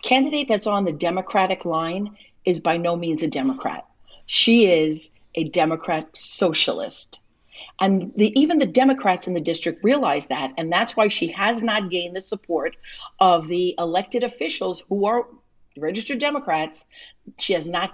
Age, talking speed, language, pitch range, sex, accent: 50-69, 155 wpm, English, 175-255 Hz, female, American